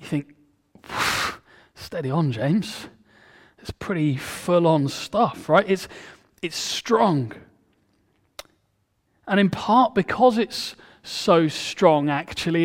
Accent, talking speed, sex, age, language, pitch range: British, 100 wpm, male, 30-49, English, 150-190 Hz